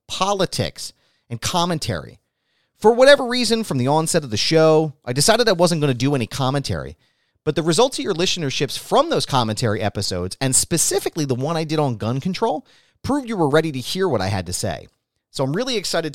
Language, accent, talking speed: English, American, 205 wpm